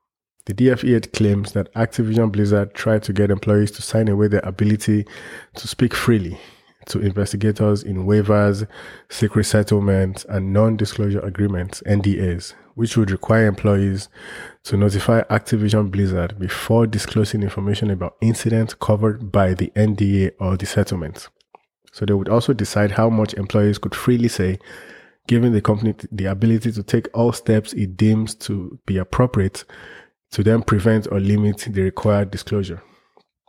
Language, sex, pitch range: English, male, 100-110 Hz